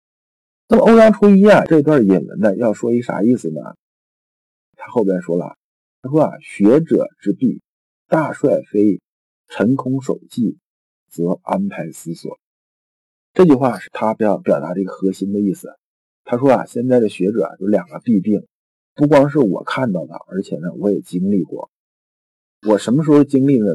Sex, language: male, Chinese